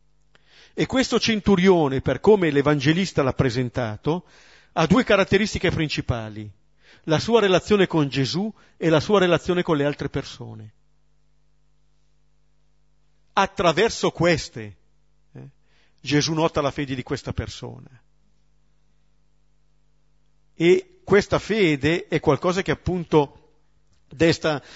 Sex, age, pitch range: male, 50-69, 140-180 Hz